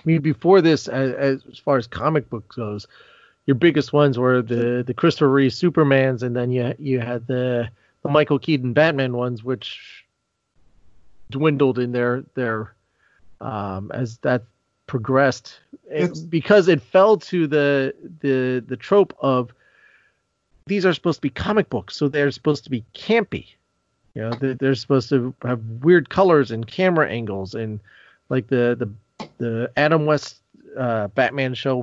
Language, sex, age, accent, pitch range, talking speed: English, male, 40-59, American, 120-150 Hz, 160 wpm